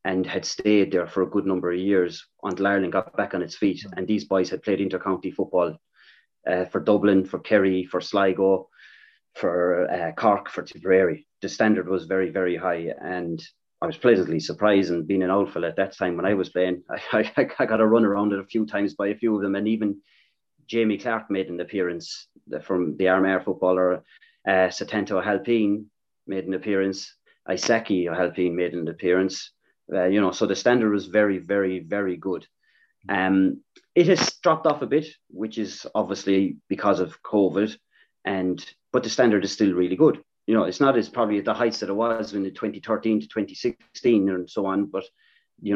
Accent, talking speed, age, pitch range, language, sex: Irish, 195 wpm, 30-49, 95-105 Hz, English, male